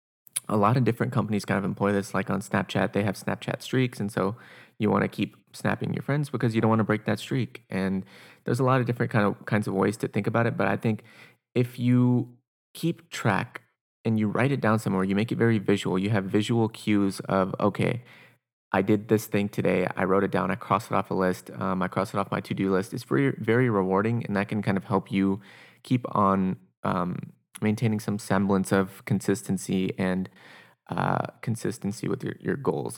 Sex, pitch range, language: male, 95-115 Hz, English